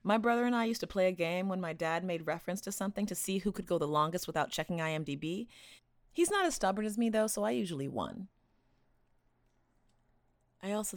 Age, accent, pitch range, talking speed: 30-49, American, 145-205 Hz, 215 wpm